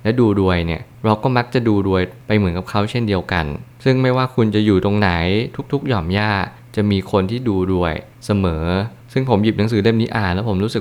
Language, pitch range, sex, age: Thai, 95-115 Hz, male, 20-39